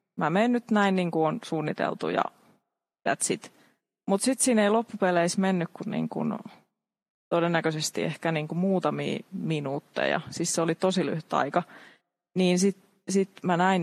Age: 20-39